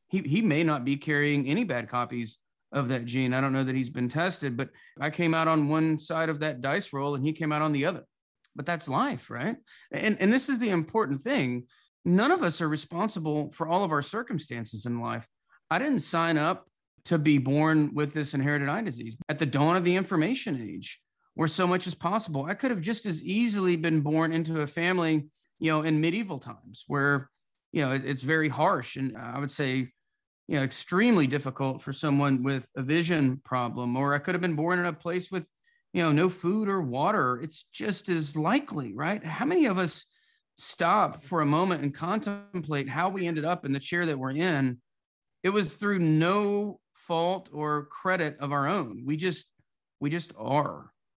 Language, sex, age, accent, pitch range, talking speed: English, male, 30-49, American, 140-175 Hz, 205 wpm